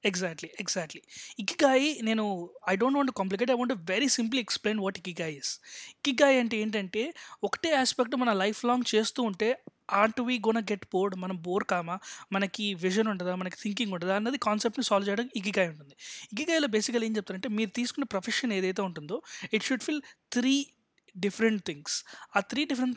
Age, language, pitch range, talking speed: 20-39, Telugu, 195-250 Hz, 190 wpm